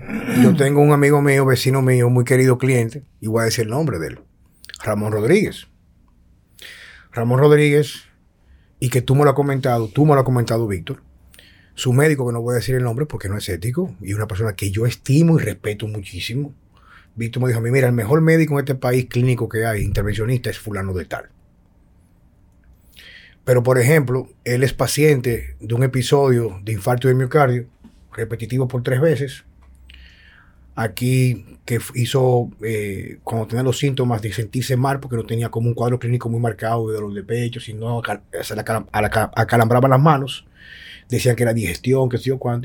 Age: 30-49